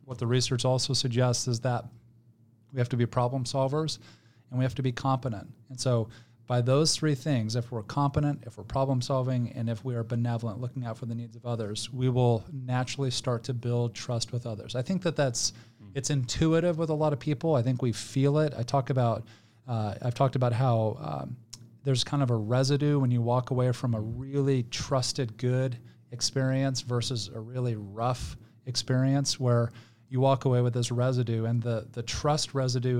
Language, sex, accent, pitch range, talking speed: English, male, American, 115-130 Hz, 200 wpm